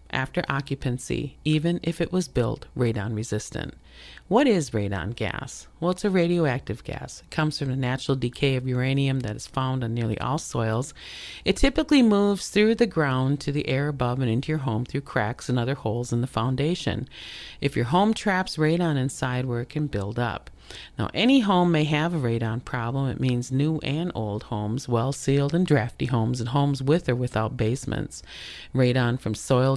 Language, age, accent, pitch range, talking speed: English, 40-59, American, 120-155 Hz, 185 wpm